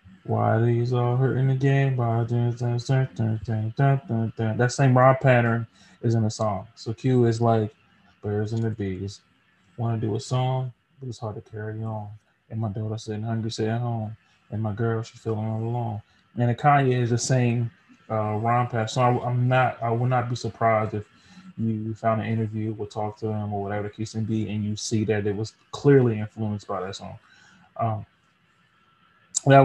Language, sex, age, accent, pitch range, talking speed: English, male, 20-39, American, 110-120 Hz, 210 wpm